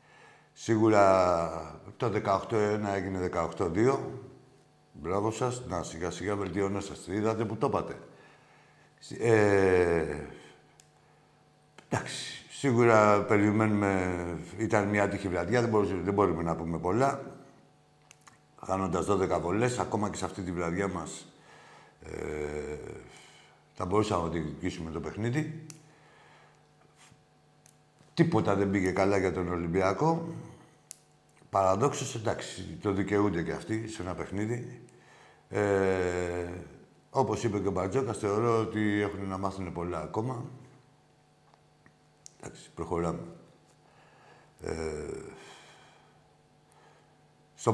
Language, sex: Greek, male